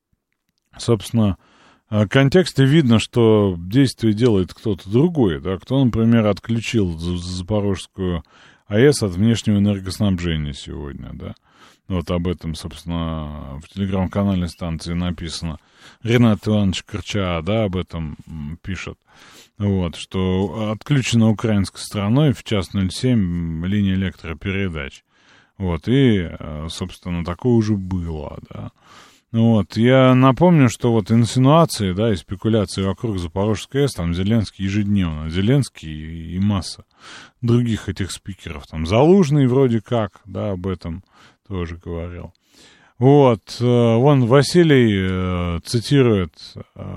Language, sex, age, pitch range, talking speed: Russian, male, 30-49, 90-115 Hz, 110 wpm